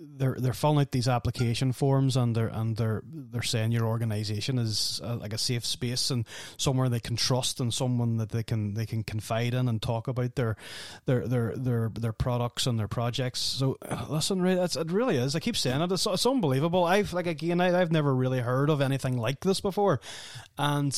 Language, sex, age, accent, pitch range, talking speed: English, male, 30-49, Irish, 115-160 Hz, 215 wpm